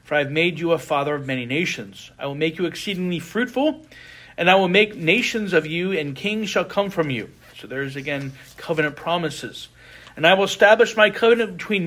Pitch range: 140-190 Hz